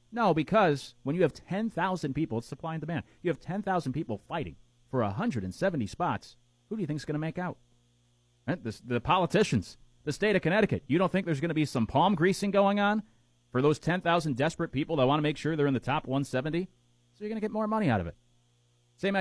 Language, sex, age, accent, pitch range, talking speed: English, male, 30-49, American, 115-160 Hz, 230 wpm